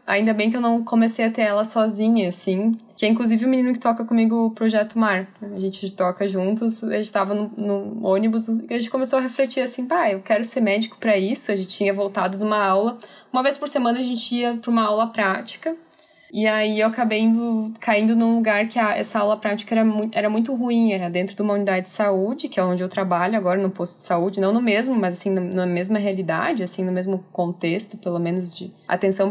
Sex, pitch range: female, 195-235 Hz